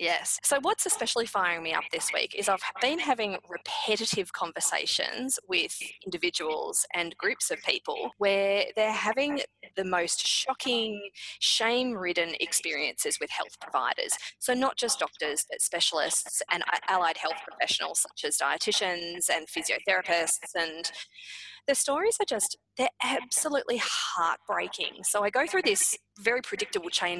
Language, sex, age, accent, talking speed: English, female, 20-39, Australian, 140 wpm